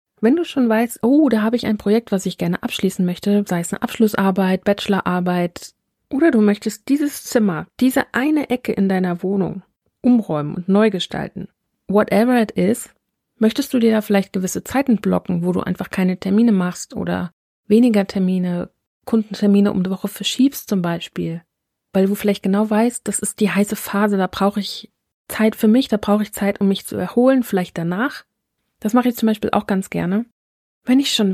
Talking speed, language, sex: 190 wpm, German, female